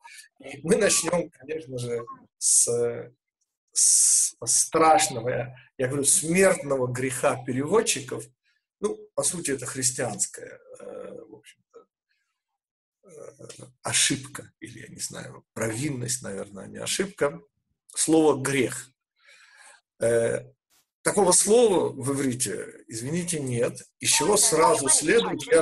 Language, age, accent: Russian, 50-69, native